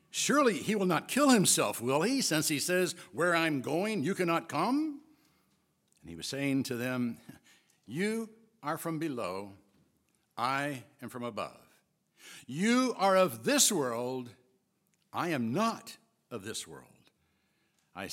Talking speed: 140 wpm